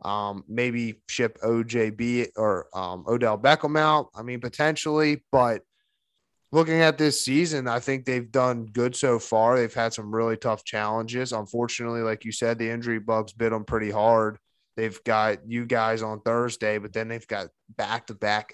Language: English